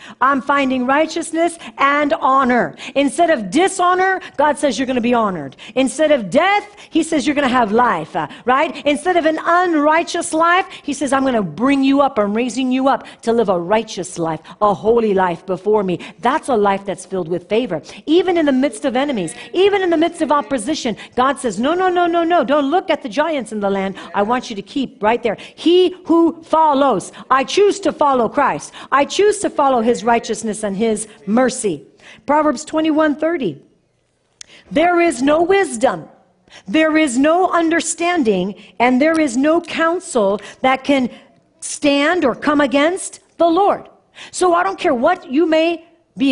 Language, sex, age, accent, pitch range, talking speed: English, female, 50-69, American, 230-330 Hz, 180 wpm